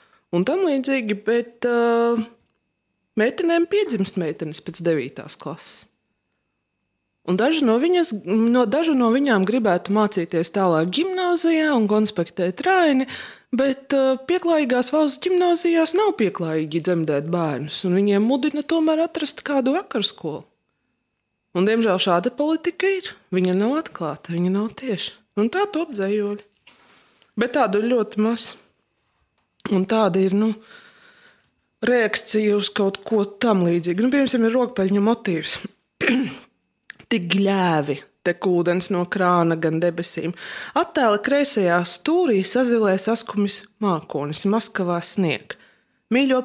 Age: 20-39